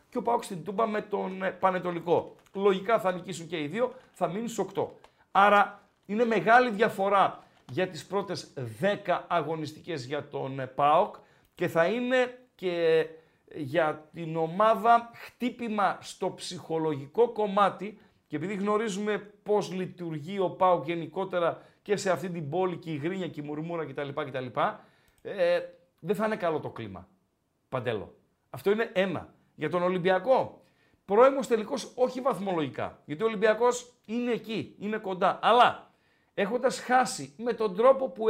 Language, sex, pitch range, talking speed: Greek, male, 160-225 Hz, 145 wpm